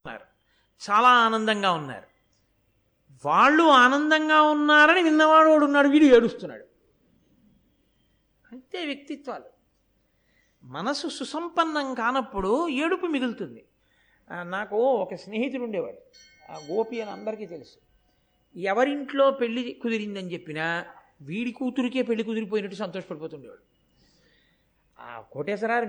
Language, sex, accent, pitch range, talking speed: Telugu, male, native, 200-285 Hz, 90 wpm